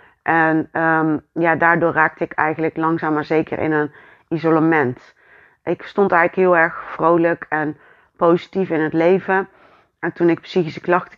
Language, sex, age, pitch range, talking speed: Dutch, female, 30-49, 150-170 Hz, 150 wpm